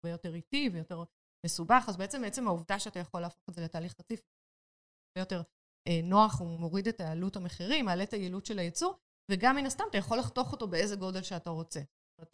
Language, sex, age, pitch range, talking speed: Hebrew, female, 30-49, 170-210 Hz, 200 wpm